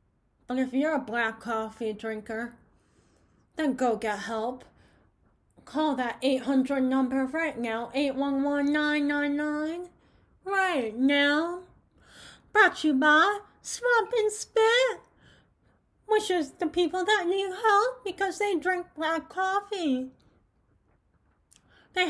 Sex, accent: female, American